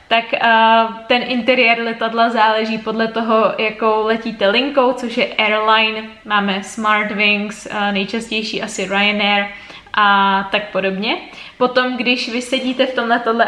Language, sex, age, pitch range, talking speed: Czech, female, 20-39, 215-240 Hz, 140 wpm